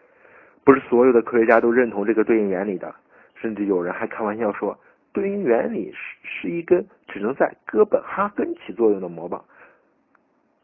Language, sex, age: Chinese, male, 50-69